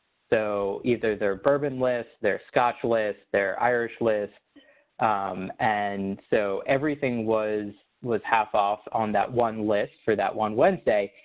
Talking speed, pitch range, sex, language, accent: 145 wpm, 105-125 Hz, male, English, American